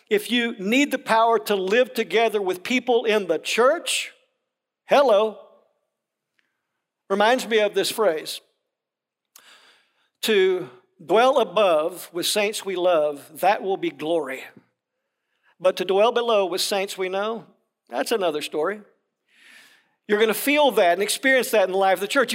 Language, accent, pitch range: English, American, 180-230 Hz